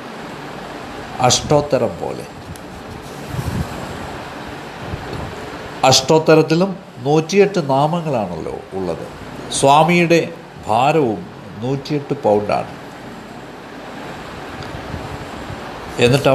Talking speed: 40 wpm